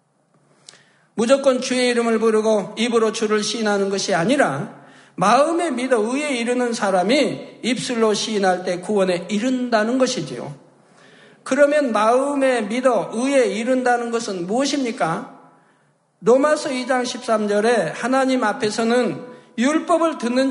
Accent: native